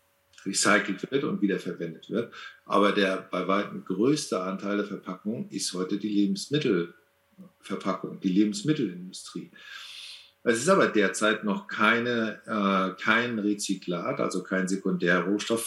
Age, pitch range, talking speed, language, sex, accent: 50-69, 100-125 Hz, 120 wpm, German, male, German